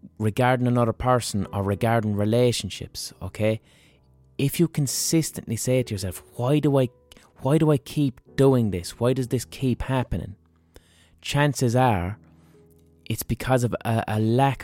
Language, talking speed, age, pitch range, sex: English, 145 wpm, 20-39, 85-130 Hz, male